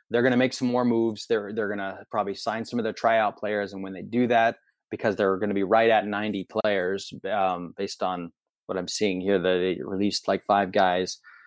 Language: English